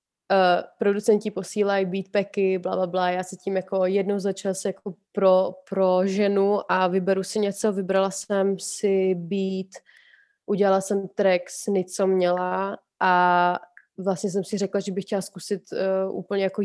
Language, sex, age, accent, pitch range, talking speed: Czech, female, 20-39, native, 190-205 Hz, 150 wpm